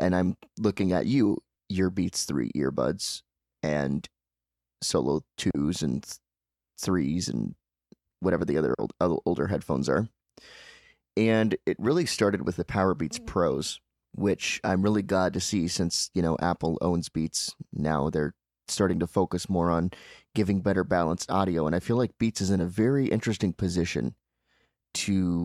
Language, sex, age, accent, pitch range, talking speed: English, male, 30-49, American, 80-100 Hz, 155 wpm